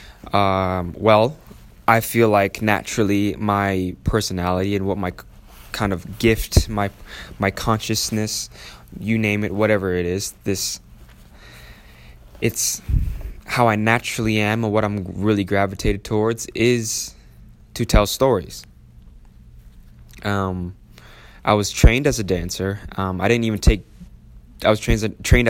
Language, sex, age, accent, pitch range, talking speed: English, male, 20-39, American, 90-110 Hz, 125 wpm